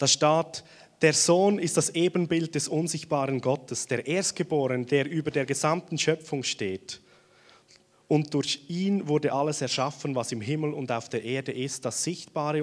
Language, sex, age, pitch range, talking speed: German, male, 30-49, 125-155 Hz, 160 wpm